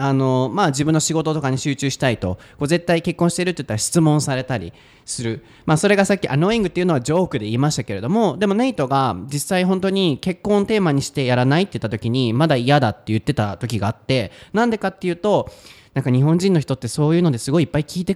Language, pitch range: Japanese, 120-180 Hz